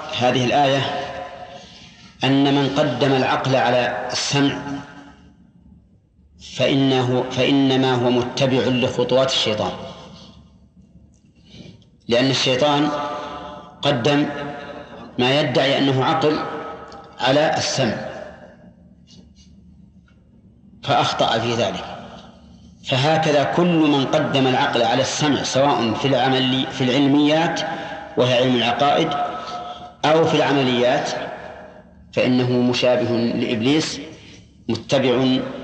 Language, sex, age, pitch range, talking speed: Arabic, male, 40-59, 125-145 Hz, 80 wpm